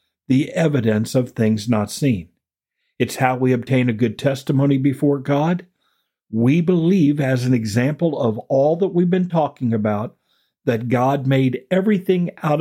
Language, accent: English, American